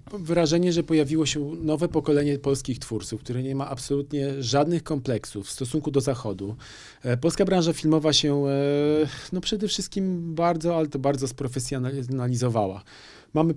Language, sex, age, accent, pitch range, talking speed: Polish, male, 40-59, native, 135-165 Hz, 135 wpm